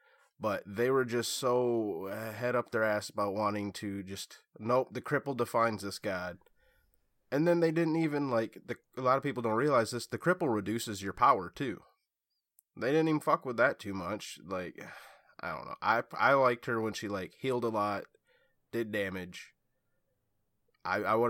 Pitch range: 95-120 Hz